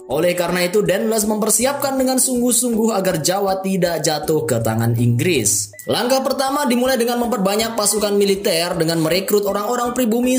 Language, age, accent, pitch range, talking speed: Indonesian, 20-39, native, 155-225 Hz, 145 wpm